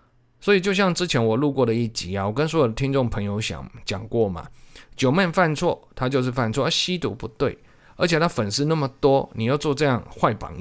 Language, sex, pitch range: Chinese, male, 110-155 Hz